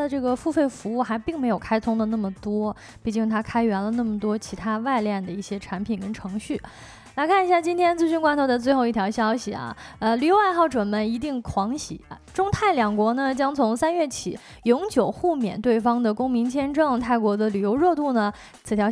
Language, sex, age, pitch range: Chinese, female, 20-39, 215-295 Hz